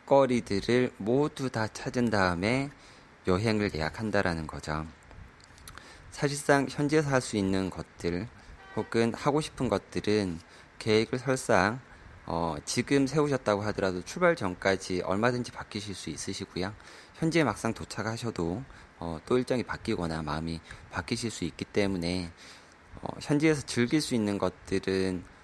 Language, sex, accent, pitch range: Korean, male, native, 85-120 Hz